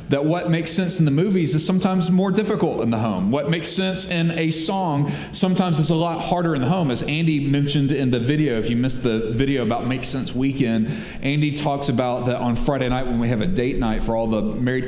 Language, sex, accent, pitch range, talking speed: English, male, American, 130-165 Hz, 240 wpm